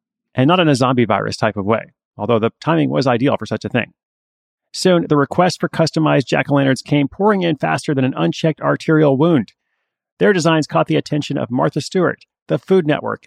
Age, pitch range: 30-49, 125-160 Hz